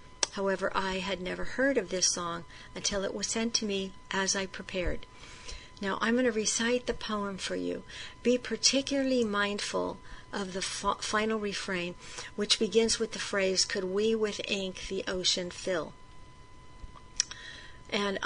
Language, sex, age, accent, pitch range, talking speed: English, female, 50-69, American, 185-215 Hz, 150 wpm